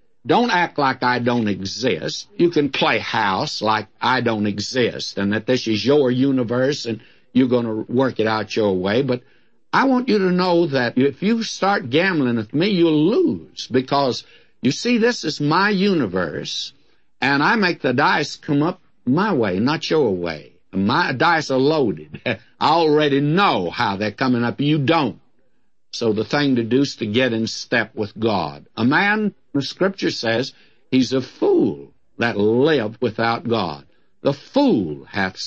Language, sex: English, male